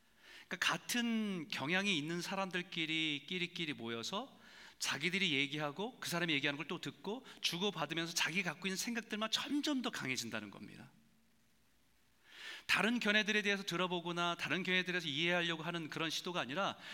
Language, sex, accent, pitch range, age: Korean, male, native, 145-210 Hz, 40-59